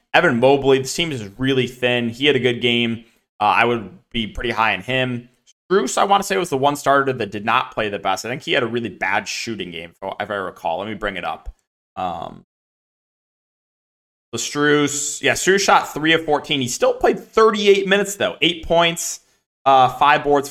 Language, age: English, 20-39